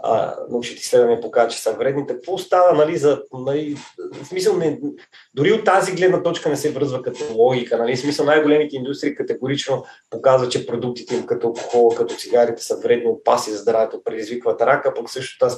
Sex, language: male, Bulgarian